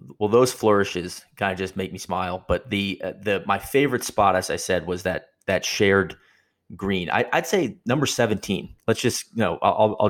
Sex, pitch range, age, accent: male, 95-105 Hz, 30-49, American